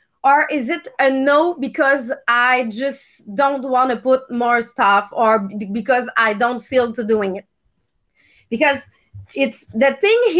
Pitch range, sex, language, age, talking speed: 235-300 Hz, female, English, 30-49, 150 wpm